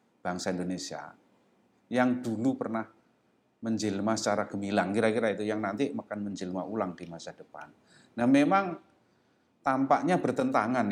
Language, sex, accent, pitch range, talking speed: Indonesian, male, native, 90-110 Hz, 120 wpm